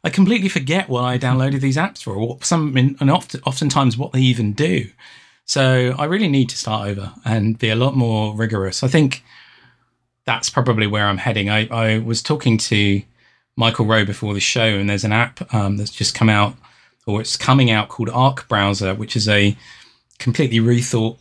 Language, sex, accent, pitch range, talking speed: English, male, British, 110-135 Hz, 200 wpm